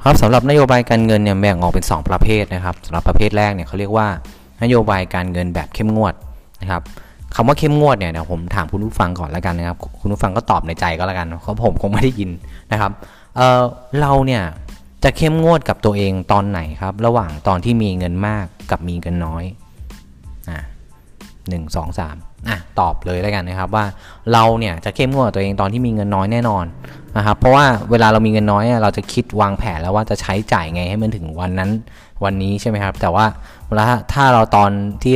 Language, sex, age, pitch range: Thai, male, 20-39, 90-115 Hz